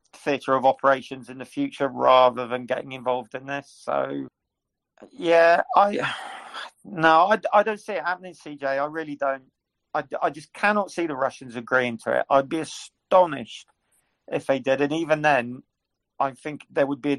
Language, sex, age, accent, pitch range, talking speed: English, male, 40-59, British, 125-145 Hz, 180 wpm